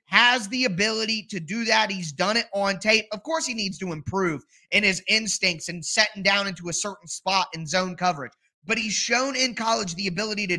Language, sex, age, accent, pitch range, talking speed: English, male, 20-39, American, 185-235 Hz, 215 wpm